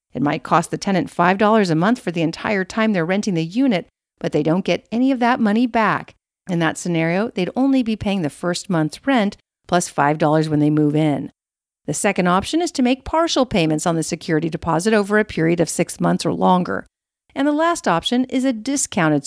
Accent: American